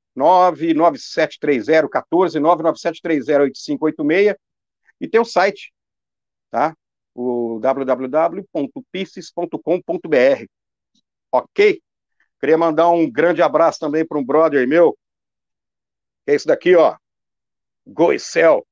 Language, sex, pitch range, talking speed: Portuguese, male, 145-190 Hz, 85 wpm